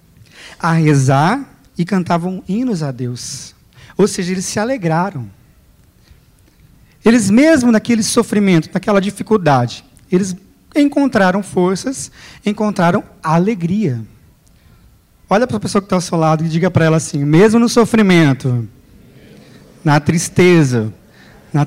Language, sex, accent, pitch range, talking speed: Portuguese, male, Brazilian, 150-205 Hz, 120 wpm